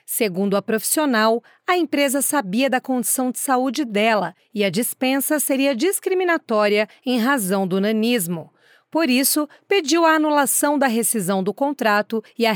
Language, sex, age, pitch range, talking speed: Portuguese, female, 40-59, 220-295 Hz, 150 wpm